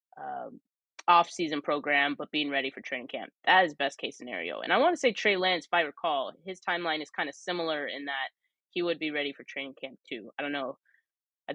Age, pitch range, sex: 20-39, 145-185 Hz, female